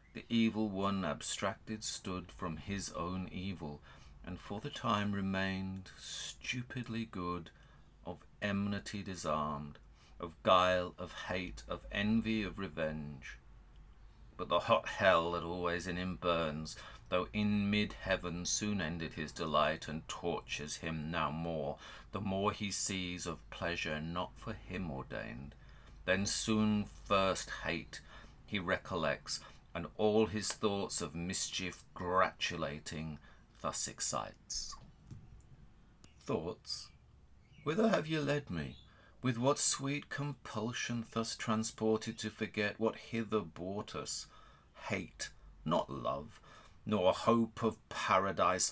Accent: British